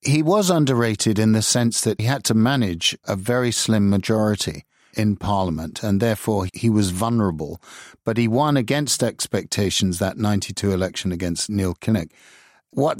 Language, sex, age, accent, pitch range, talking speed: English, male, 50-69, British, 95-120 Hz, 155 wpm